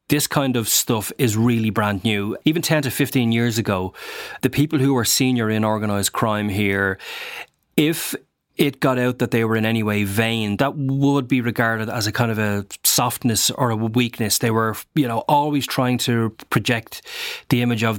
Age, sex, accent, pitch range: 30-49, male, Irish, 110-130 Hz